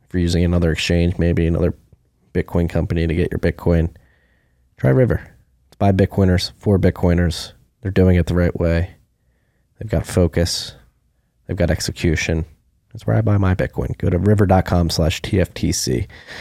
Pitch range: 85-100 Hz